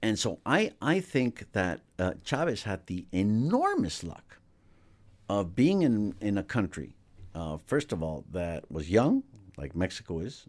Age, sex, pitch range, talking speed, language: 60-79, male, 90-115 Hz, 160 wpm, English